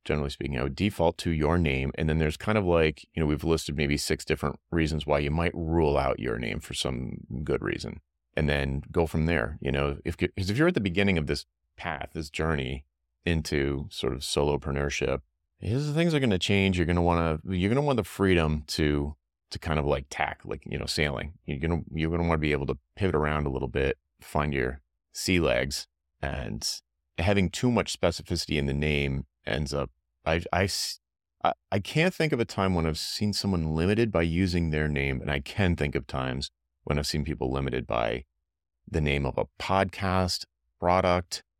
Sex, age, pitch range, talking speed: male, 30-49, 70-90 Hz, 210 wpm